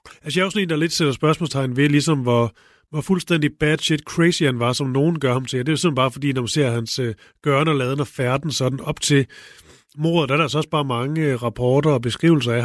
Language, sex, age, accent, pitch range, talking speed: Danish, male, 30-49, native, 135-170 Hz, 250 wpm